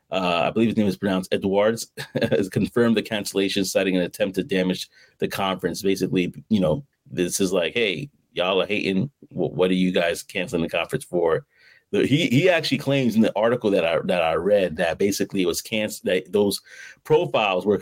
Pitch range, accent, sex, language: 95-120 Hz, American, male, English